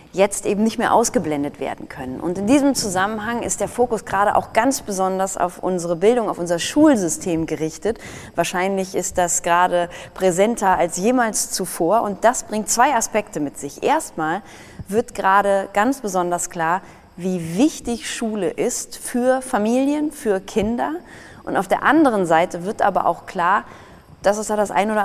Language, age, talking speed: German, 20-39, 165 wpm